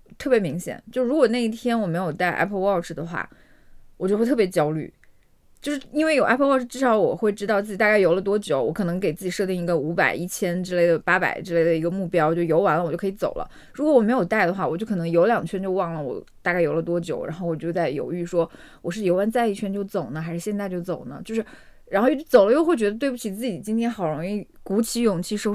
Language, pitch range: Chinese, 175-235 Hz